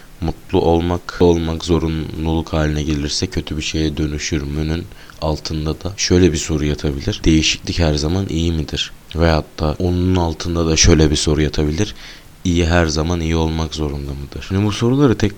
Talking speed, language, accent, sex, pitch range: 165 wpm, Turkish, native, male, 75-100 Hz